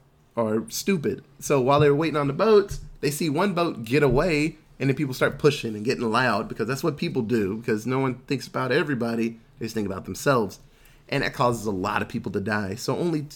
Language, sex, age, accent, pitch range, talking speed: English, male, 30-49, American, 120-150 Hz, 230 wpm